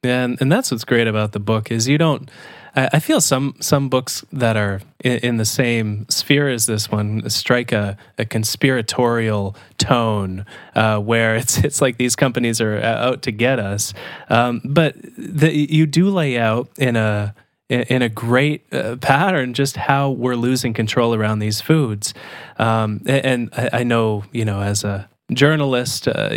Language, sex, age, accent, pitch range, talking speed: English, male, 20-39, American, 110-140 Hz, 175 wpm